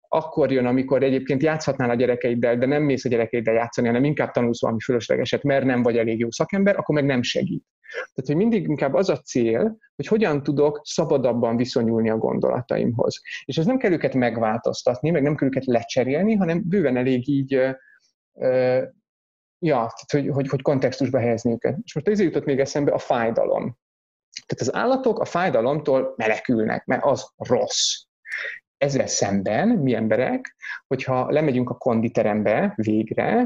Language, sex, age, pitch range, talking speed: Hungarian, male, 30-49, 120-175 Hz, 165 wpm